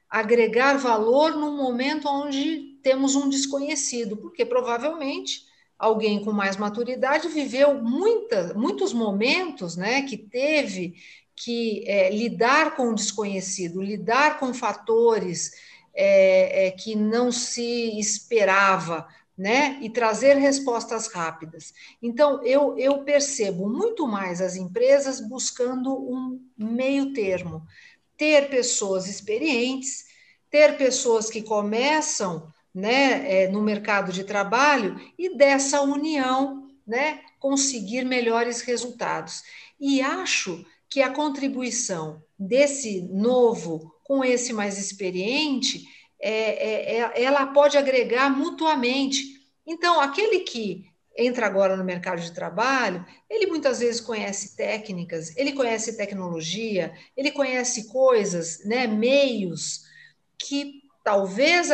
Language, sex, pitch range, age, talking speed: Portuguese, female, 205-280 Hz, 50-69, 105 wpm